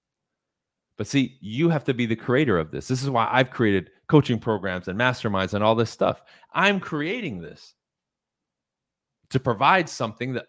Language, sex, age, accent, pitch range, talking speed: English, male, 30-49, American, 100-145 Hz, 170 wpm